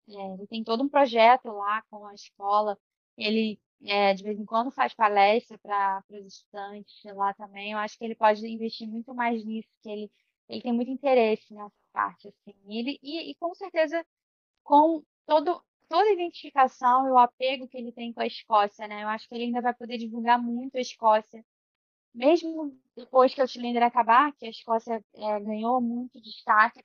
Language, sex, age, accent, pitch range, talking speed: Portuguese, female, 10-29, Brazilian, 210-245 Hz, 190 wpm